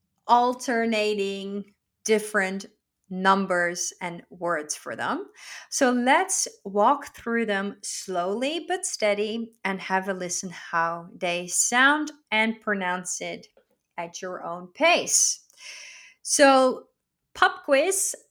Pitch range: 190-260 Hz